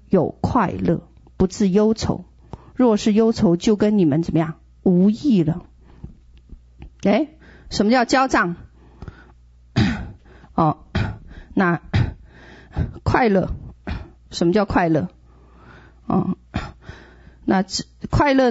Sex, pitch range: female, 155-245 Hz